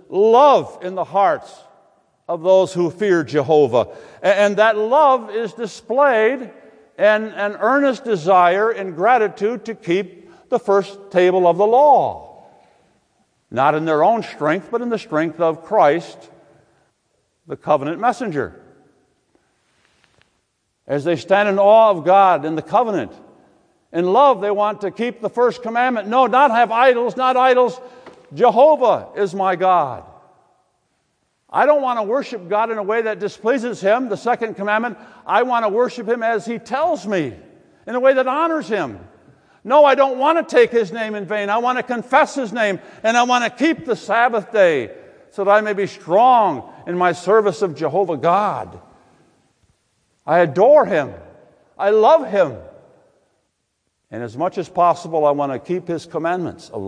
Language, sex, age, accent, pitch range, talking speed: English, male, 60-79, American, 180-245 Hz, 165 wpm